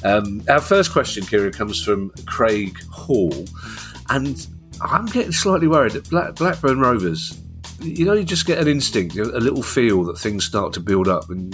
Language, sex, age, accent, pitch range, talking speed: English, male, 40-59, British, 90-115 Hz, 175 wpm